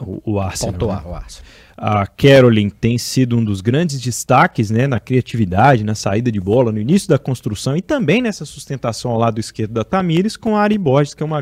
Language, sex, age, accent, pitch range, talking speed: Portuguese, male, 20-39, Brazilian, 110-140 Hz, 195 wpm